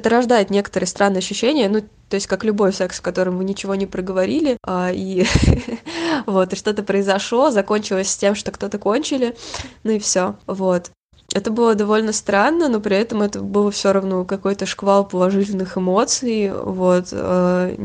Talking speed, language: 170 wpm, Russian